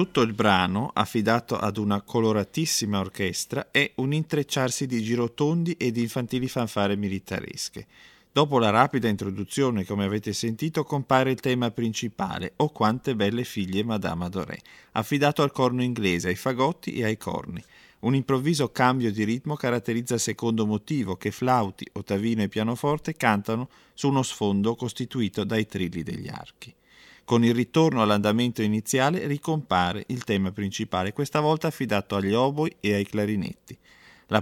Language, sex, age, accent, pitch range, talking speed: Italian, male, 40-59, native, 100-135 Hz, 150 wpm